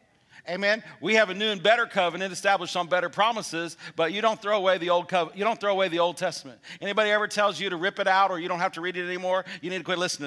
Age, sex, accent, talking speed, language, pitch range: 50-69, male, American, 280 wpm, English, 170-210 Hz